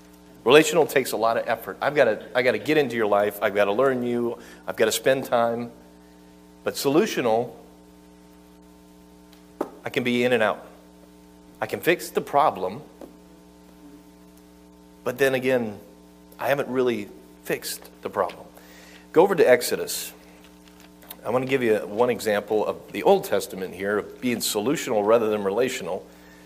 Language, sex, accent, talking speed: English, male, American, 160 wpm